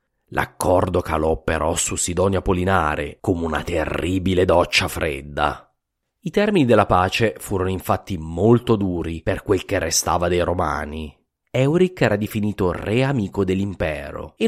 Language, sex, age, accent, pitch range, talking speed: English, male, 30-49, Italian, 85-115 Hz, 135 wpm